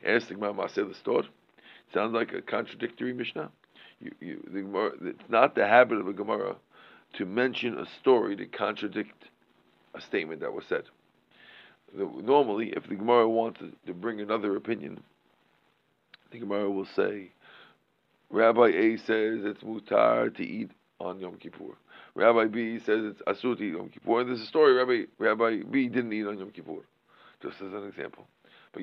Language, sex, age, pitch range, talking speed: English, male, 50-69, 105-125 Hz, 170 wpm